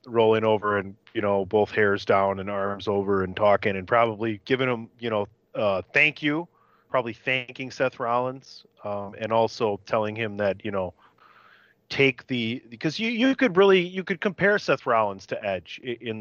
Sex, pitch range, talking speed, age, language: male, 110-135 Hz, 185 wpm, 30-49, English